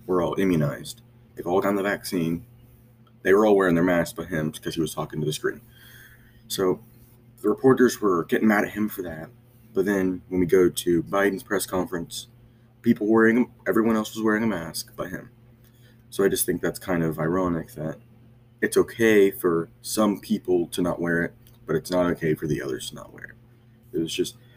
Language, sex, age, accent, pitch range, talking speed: English, male, 30-49, American, 90-120 Hz, 205 wpm